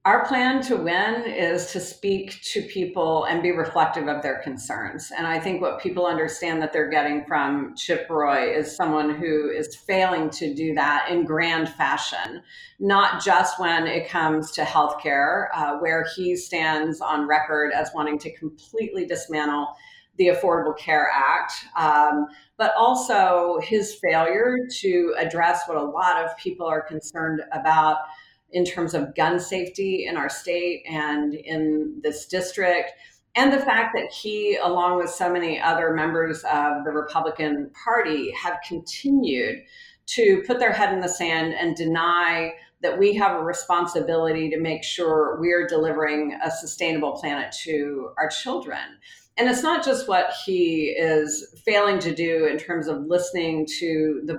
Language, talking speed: English, 160 wpm